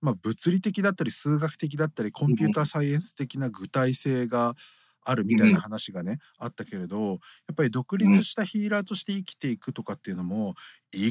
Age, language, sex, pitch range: 50-69, Japanese, male, 125-200 Hz